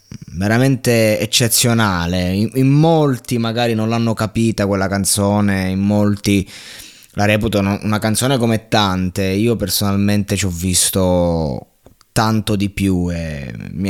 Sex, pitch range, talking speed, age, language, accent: male, 100-130 Hz, 125 wpm, 20-39, Italian, native